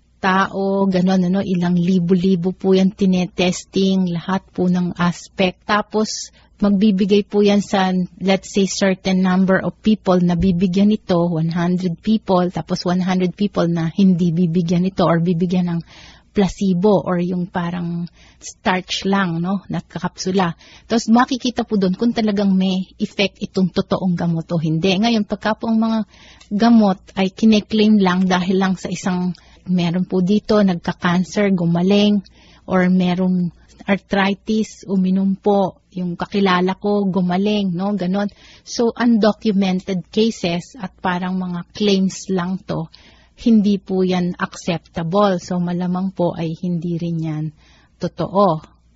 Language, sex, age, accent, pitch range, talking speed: Filipino, female, 30-49, native, 180-200 Hz, 130 wpm